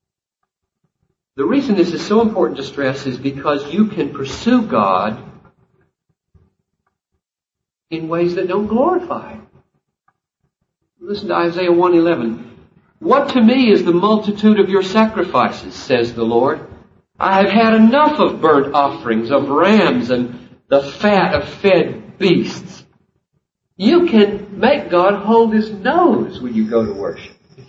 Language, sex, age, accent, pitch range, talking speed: English, male, 50-69, American, 165-230 Hz, 140 wpm